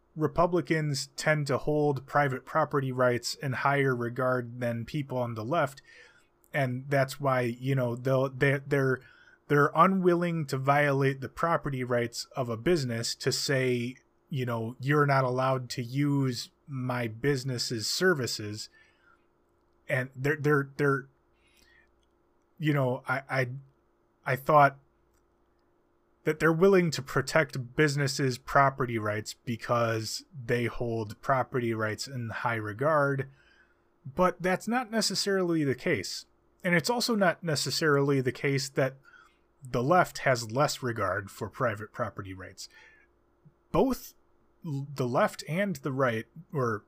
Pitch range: 120-150 Hz